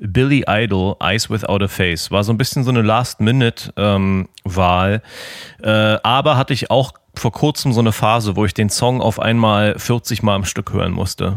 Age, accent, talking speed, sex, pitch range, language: 30-49, German, 180 wpm, male, 110-130 Hz, German